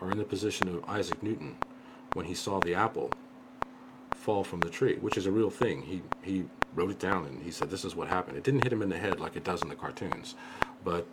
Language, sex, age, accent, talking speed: English, male, 50-69, American, 255 wpm